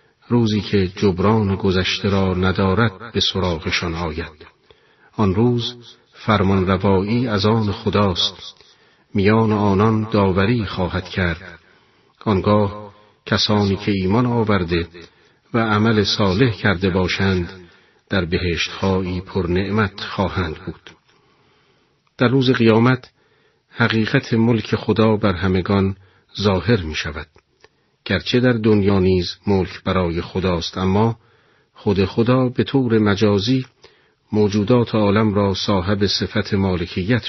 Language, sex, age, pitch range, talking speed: Persian, male, 50-69, 95-110 Hz, 105 wpm